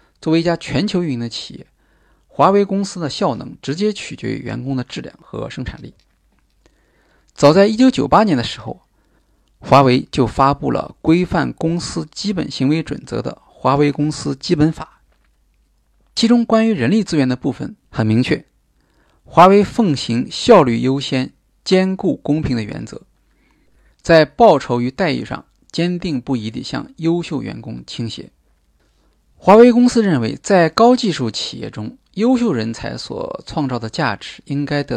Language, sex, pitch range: Chinese, male, 120-175 Hz